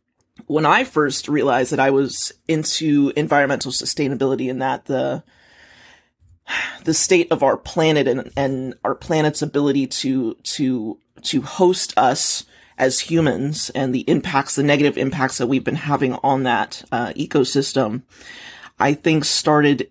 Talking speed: 140 wpm